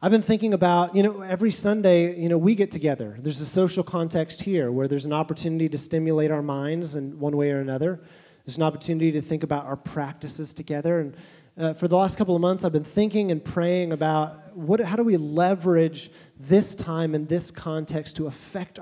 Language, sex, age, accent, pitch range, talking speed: English, male, 30-49, American, 150-180 Hz, 210 wpm